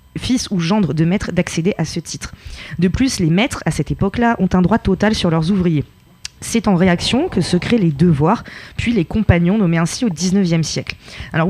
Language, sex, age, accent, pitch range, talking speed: French, female, 20-39, French, 170-215 Hz, 210 wpm